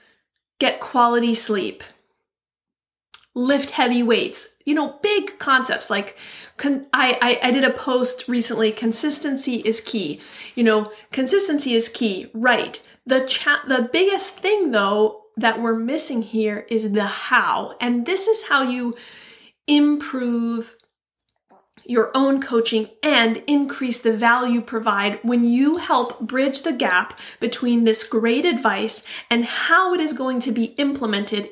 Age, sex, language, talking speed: 30-49, female, English, 140 wpm